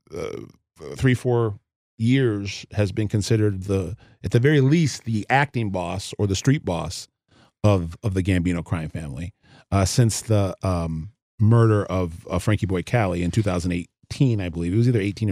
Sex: male